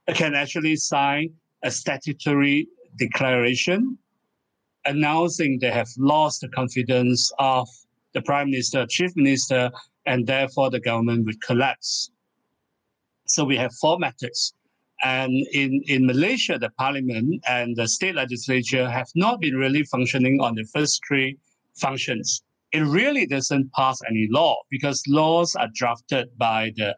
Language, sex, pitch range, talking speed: English, male, 125-160 Hz, 135 wpm